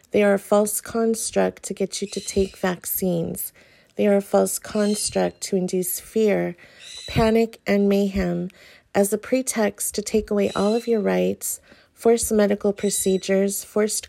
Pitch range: 185-210 Hz